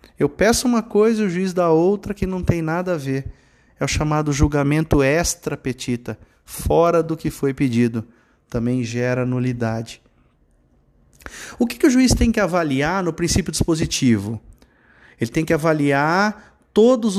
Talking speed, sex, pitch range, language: 155 wpm, male, 140-220 Hz, Portuguese